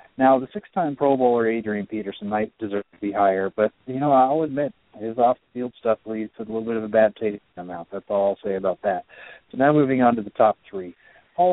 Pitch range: 105-130 Hz